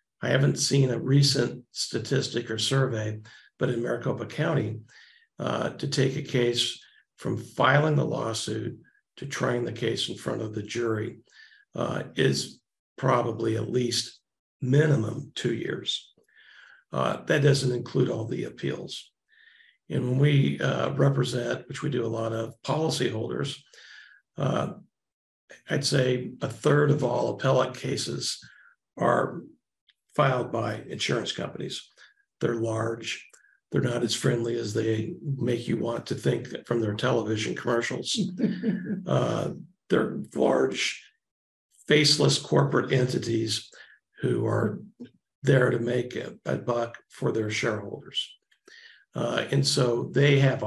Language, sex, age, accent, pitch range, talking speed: English, male, 50-69, American, 115-145 Hz, 130 wpm